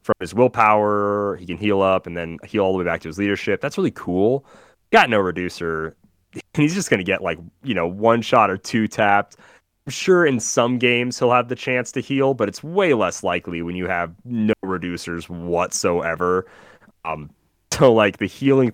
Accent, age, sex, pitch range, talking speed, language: American, 30-49, male, 85-110 Hz, 200 wpm, English